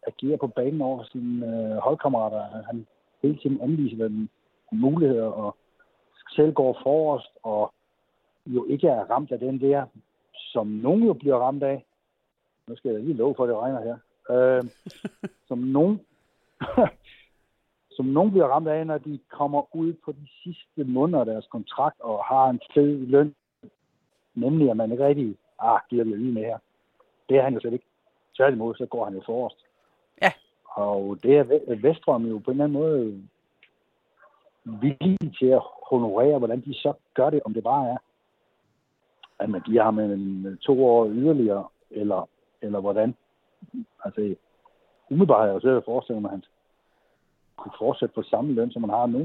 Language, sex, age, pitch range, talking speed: Danish, male, 60-79, 115-150 Hz, 165 wpm